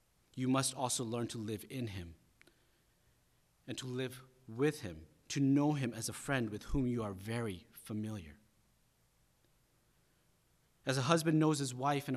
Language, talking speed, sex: English, 160 wpm, male